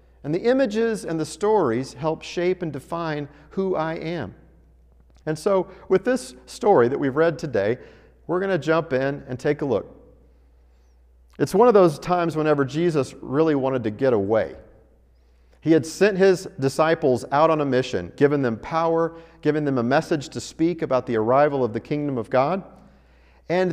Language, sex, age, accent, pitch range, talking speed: English, male, 40-59, American, 120-180 Hz, 175 wpm